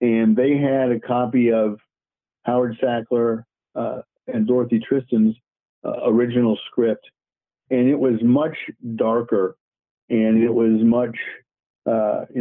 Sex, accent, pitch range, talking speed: male, American, 115-135 Hz, 125 wpm